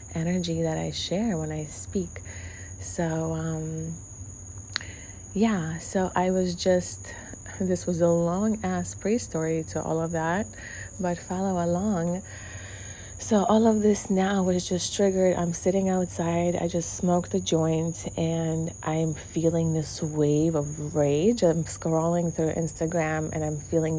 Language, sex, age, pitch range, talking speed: English, female, 30-49, 155-180 Hz, 145 wpm